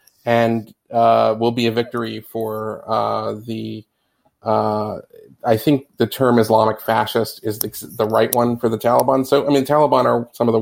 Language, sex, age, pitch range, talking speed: English, male, 30-49, 115-135 Hz, 185 wpm